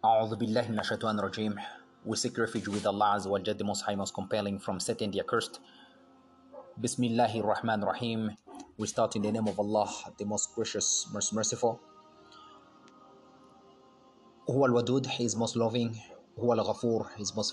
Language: English